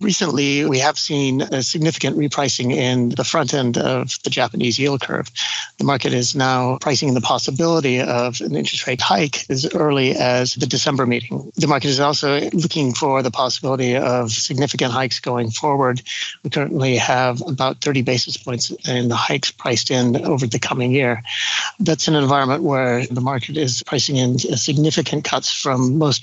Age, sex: 60-79, male